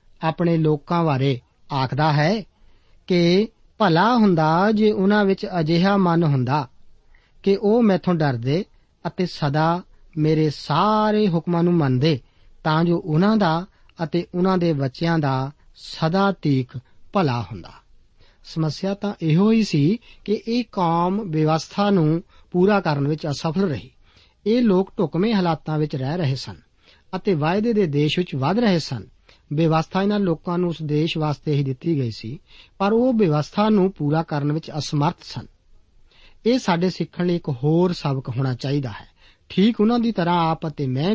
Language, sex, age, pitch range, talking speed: Punjabi, male, 50-69, 145-195 Hz, 120 wpm